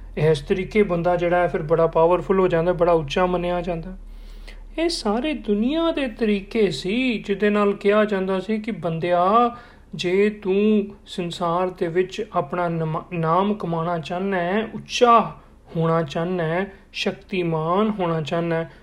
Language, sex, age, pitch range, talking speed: Punjabi, male, 40-59, 170-210 Hz, 150 wpm